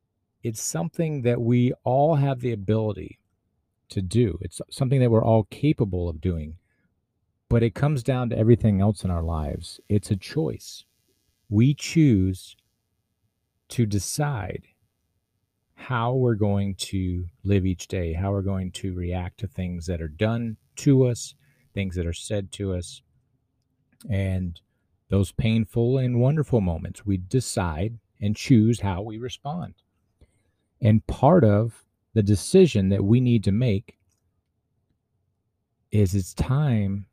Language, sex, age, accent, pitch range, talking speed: English, male, 50-69, American, 95-115 Hz, 140 wpm